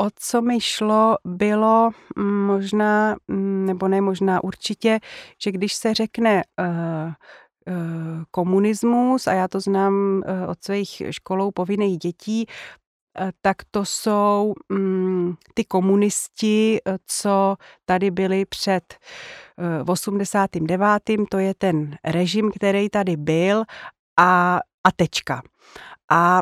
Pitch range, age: 185-215 Hz, 30-49